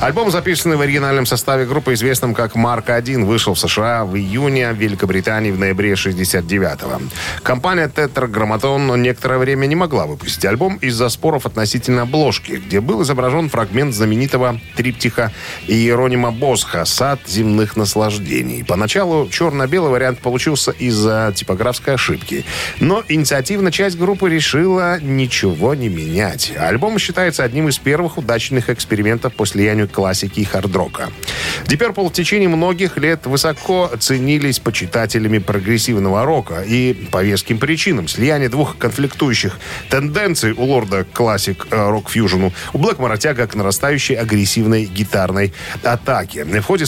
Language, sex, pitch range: Russian, male, 105-140 Hz